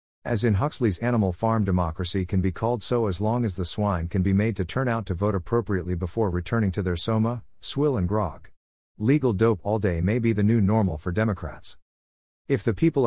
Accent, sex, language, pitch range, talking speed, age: American, male, English, 90-115 Hz, 210 wpm, 50-69